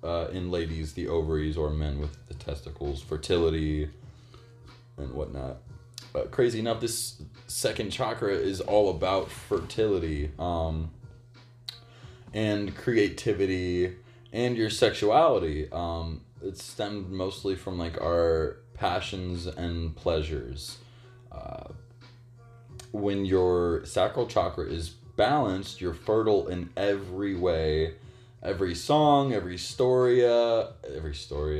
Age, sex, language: 20-39, male, English